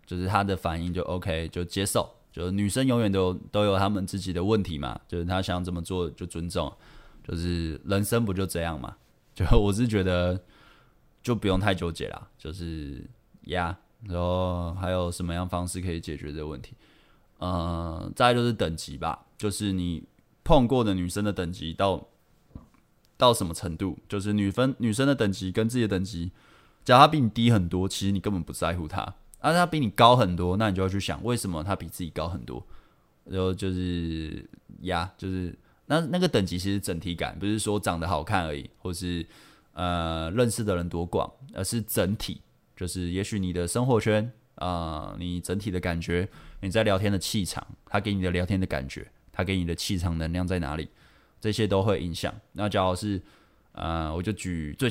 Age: 20-39